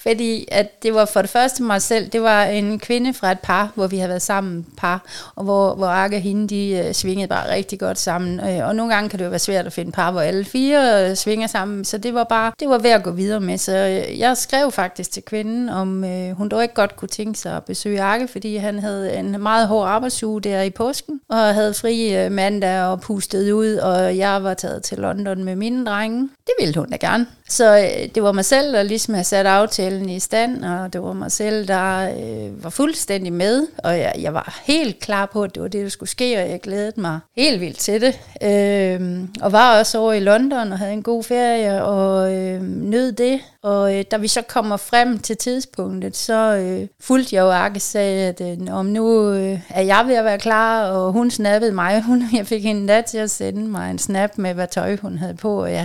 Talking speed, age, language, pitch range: 240 wpm, 30-49, Danish, 190-225 Hz